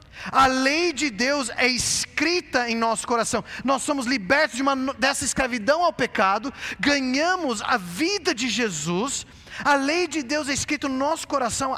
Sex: male